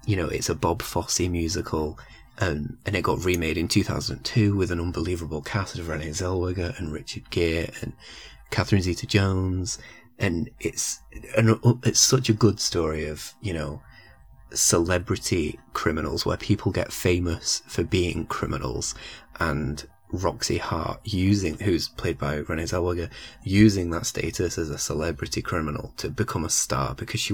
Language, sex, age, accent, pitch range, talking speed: English, male, 20-39, British, 85-105 Hz, 150 wpm